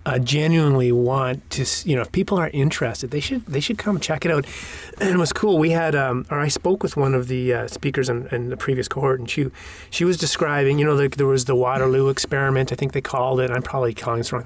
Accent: American